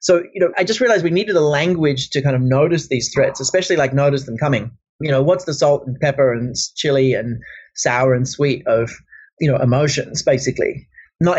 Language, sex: English, male